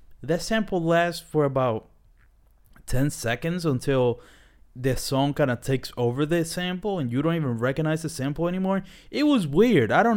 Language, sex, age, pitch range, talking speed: English, male, 20-39, 120-170 Hz, 170 wpm